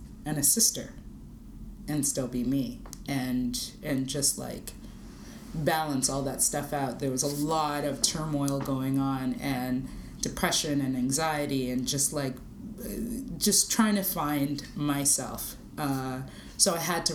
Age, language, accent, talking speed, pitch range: 30-49, English, American, 145 wpm, 130-150 Hz